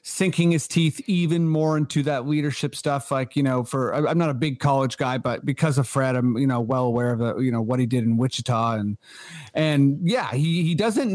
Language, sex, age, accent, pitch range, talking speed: English, male, 30-49, American, 135-165 Hz, 225 wpm